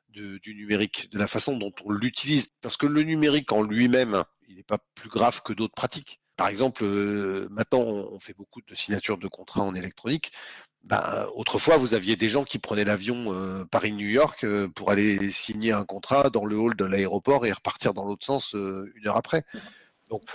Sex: male